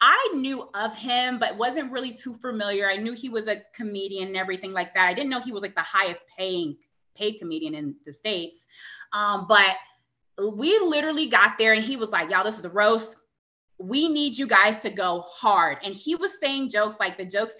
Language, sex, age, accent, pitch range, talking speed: English, female, 20-39, American, 195-255 Hz, 215 wpm